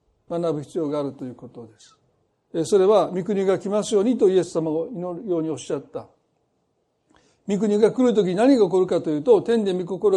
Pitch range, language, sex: 190-270 Hz, Japanese, male